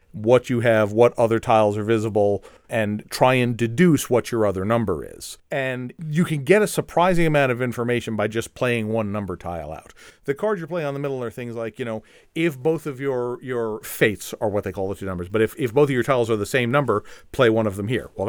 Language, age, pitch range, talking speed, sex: English, 40-59, 110-140 Hz, 245 wpm, male